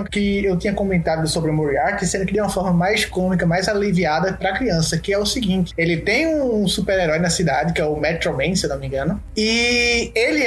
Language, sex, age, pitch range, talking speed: Portuguese, male, 20-39, 190-270 Hz, 225 wpm